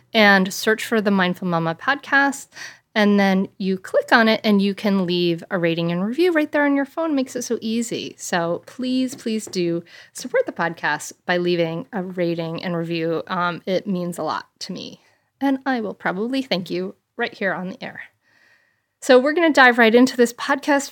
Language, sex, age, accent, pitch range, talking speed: English, female, 30-49, American, 185-250 Hz, 200 wpm